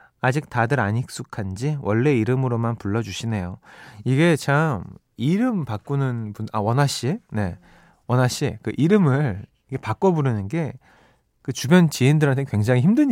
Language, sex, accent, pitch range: Korean, male, native, 110-160 Hz